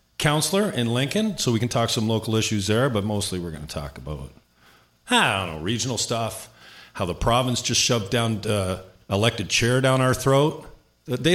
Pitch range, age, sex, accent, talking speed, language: 100-125 Hz, 40-59, male, American, 190 wpm, English